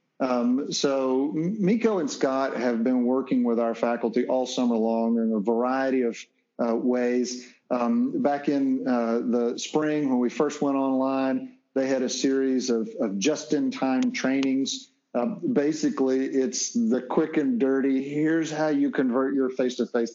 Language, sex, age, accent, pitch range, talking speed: English, male, 50-69, American, 120-155 Hz, 155 wpm